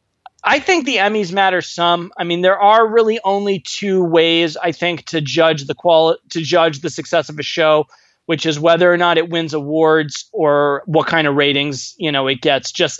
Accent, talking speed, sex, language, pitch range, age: American, 210 wpm, male, English, 155-210 Hz, 20-39